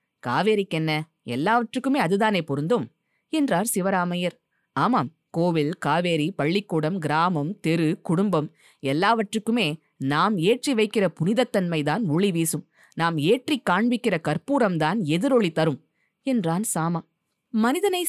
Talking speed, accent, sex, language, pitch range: 95 wpm, native, female, Tamil, 170-245 Hz